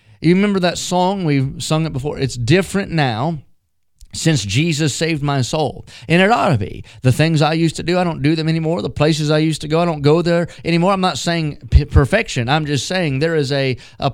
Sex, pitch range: male, 130-160 Hz